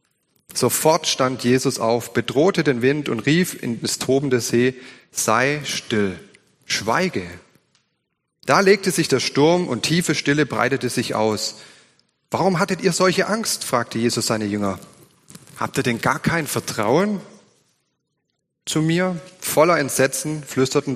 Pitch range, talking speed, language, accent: 120-155 Hz, 135 wpm, German, German